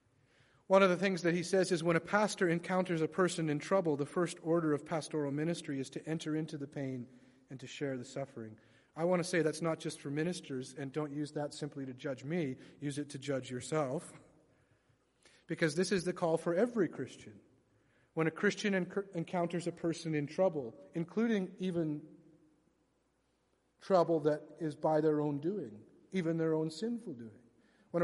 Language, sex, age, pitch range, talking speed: English, male, 40-59, 140-175 Hz, 185 wpm